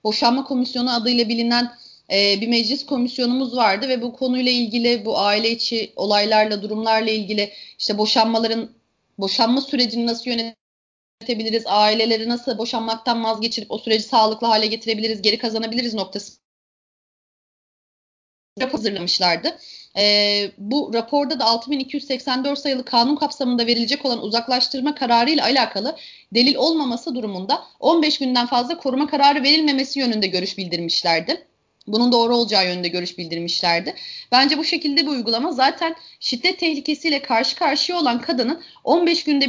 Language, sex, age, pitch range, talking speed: Turkish, female, 30-49, 225-295 Hz, 125 wpm